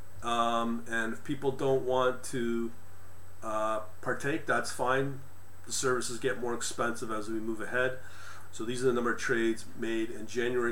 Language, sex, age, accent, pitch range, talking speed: English, male, 40-59, American, 100-125 Hz, 170 wpm